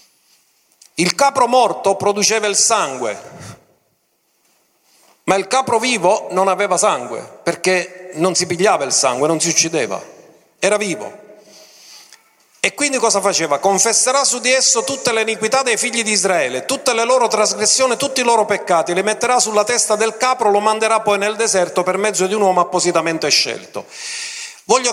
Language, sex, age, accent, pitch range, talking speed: Italian, male, 40-59, native, 180-225 Hz, 160 wpm